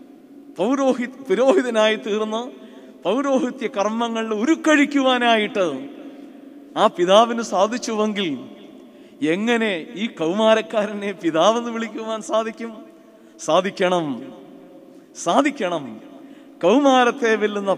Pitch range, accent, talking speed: 210-280 Hz, native, 65 wpm